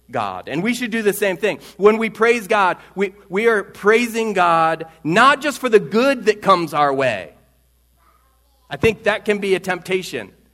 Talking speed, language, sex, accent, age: 190 wpm, English, male, American, 40-59